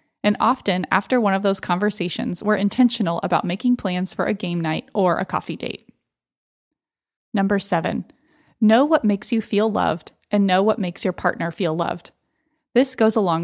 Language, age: English, 20-39